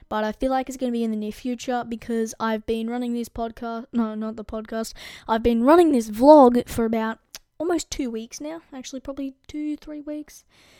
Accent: Australian